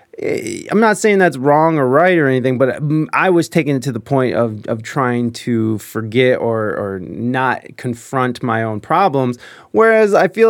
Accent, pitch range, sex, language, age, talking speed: American, 115-155 Hz, male, English, 30-49, 185 wpm